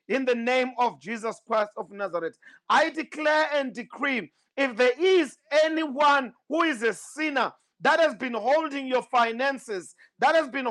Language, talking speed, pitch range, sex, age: English, 165 wpm, 220-275 Hz, male, 50-69